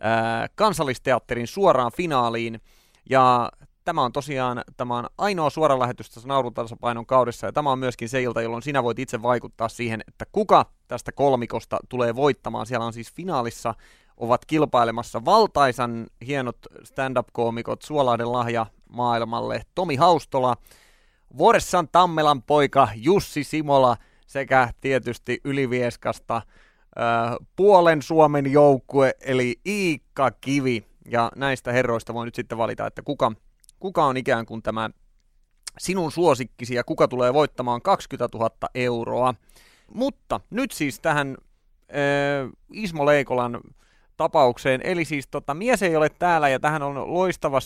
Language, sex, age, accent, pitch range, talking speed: Finnish, male, 30-49, native, 120-150 Hz, 130 wpm